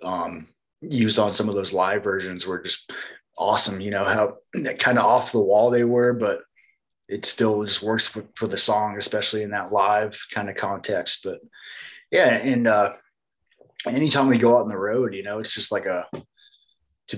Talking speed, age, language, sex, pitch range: 190 wpm, 20-39, English, male, 105-120 Hz